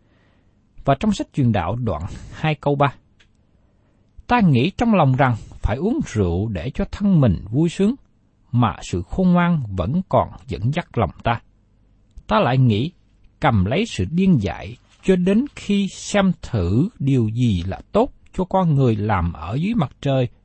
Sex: male